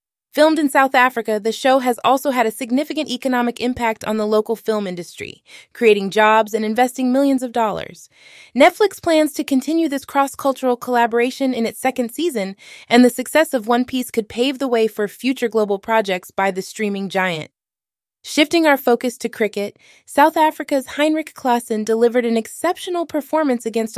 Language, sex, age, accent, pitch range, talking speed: English, female, 20-39, American, 210-270 Hz, 170 wpm